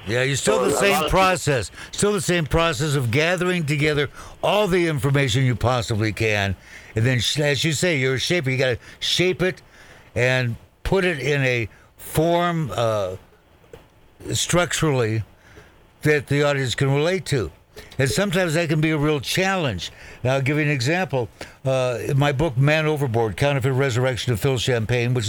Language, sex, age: English, male, 60-79